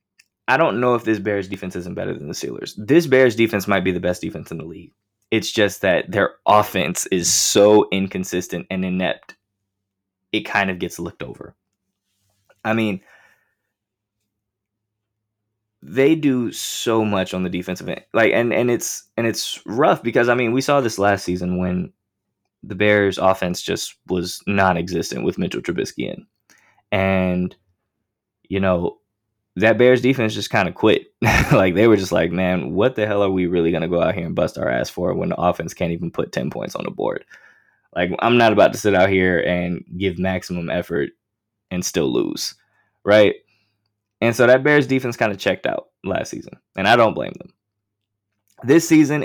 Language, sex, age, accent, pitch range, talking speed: English, male, 20-39, American, 95-115 Hz, 185 wpm